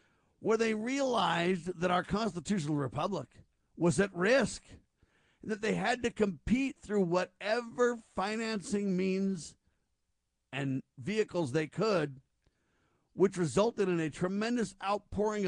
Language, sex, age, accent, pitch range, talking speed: English, male, 50-69, American, 160-210 Hz, 110 wpm